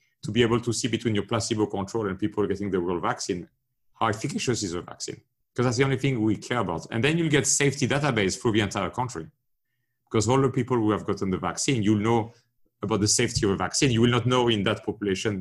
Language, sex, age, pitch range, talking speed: English, male, 40-59, 100-125 Hz, 250 wpm